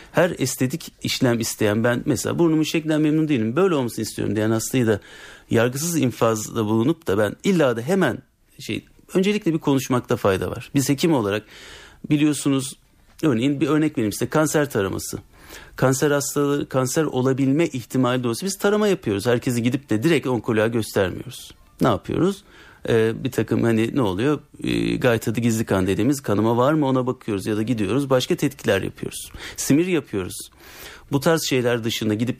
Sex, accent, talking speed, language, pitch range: male, native, 165 wpm, Turkish, 110-150 Hz